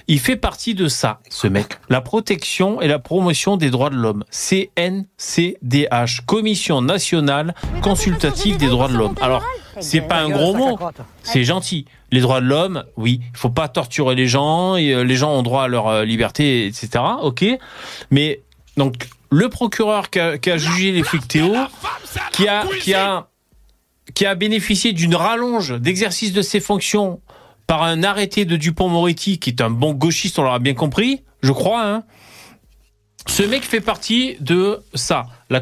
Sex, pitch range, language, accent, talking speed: male, 130-195 Hz, French, French, 175 wpm